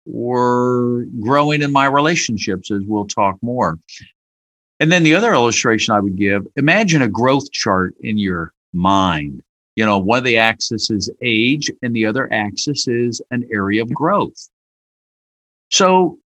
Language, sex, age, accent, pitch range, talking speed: English, male, 50-69, American, 105-140 Hz, 155 wpm